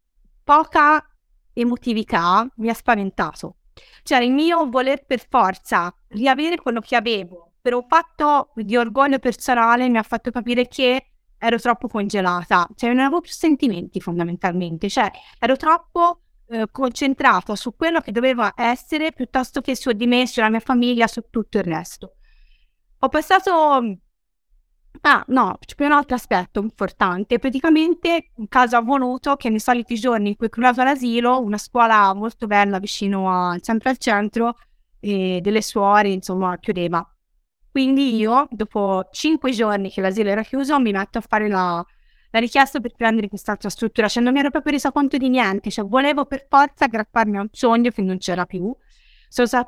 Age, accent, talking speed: 30-49, native, 170 wpm